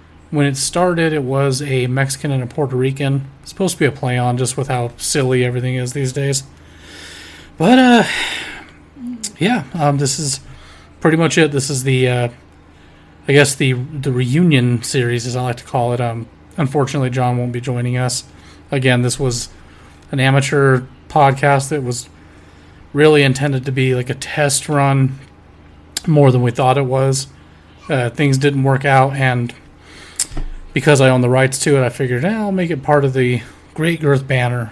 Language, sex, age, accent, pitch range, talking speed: English, male, 30-49, American, 120-140 Hz, 180 wpm